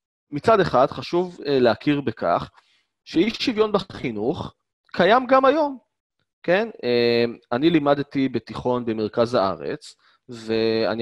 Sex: male